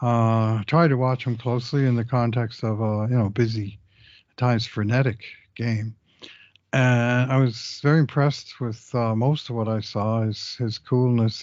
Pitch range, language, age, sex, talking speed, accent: 110-130 Hz, English, 60-79, male, 180 wpm, American